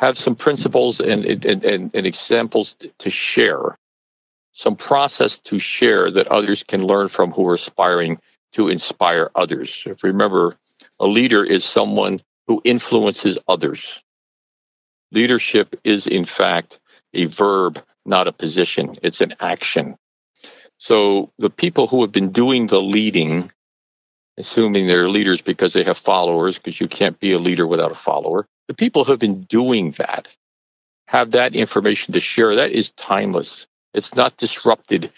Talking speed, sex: 150 wpm, male